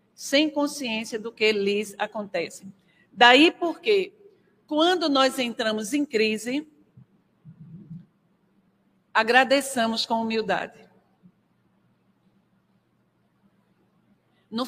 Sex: female